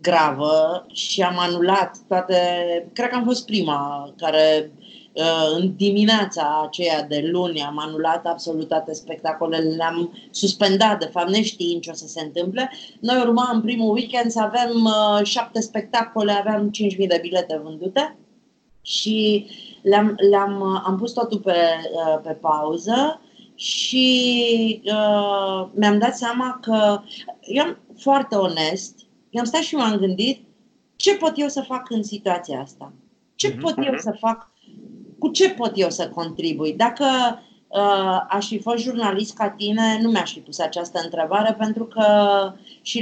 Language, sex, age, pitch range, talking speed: Romanian, female, 30-49, 170-225 Hz, 145 wpm